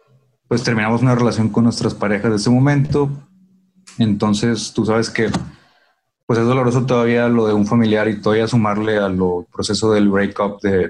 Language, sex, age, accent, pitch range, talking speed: Spanish, male, 30-49, Mexican, 105-130 Hz, 170 wpm